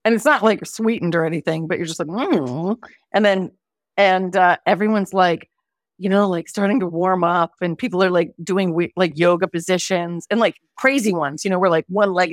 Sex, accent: female, American